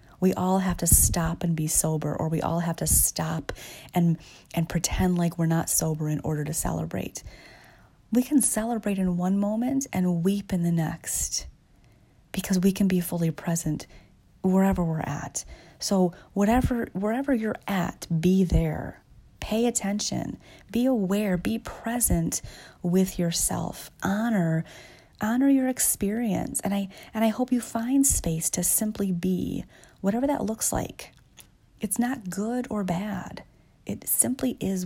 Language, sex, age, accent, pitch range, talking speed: English, female, 30-49, American, 160-205 Hz, 150 wpm